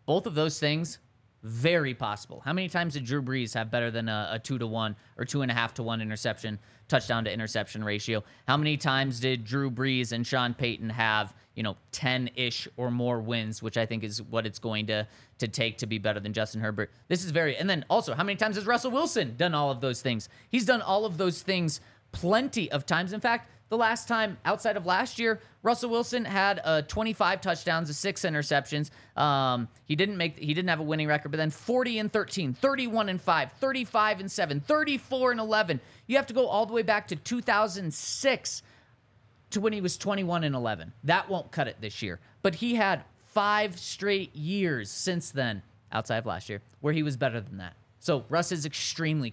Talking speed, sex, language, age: 205 wpm, male, English, 20-39